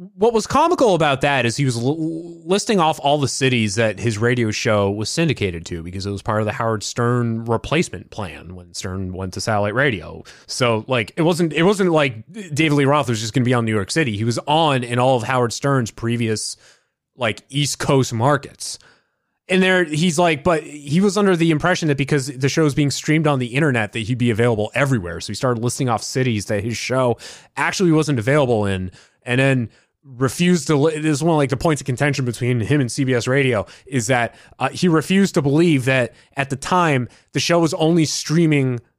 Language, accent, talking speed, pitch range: English, American, 215 wpm, 110-150 Hz